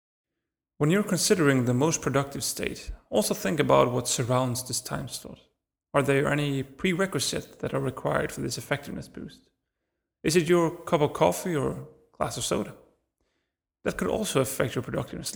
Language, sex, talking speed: Swedish, male, 165 wpm